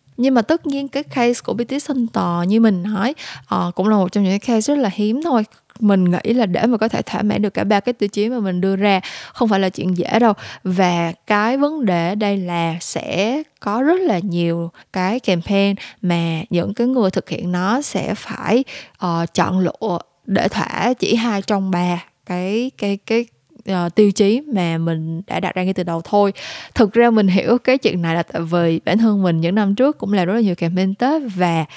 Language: Vietnamese